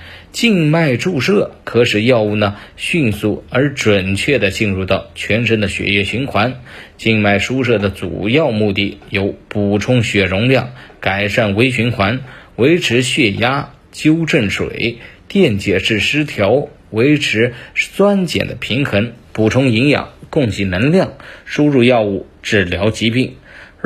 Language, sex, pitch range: Chinese, male, 100-140 Hz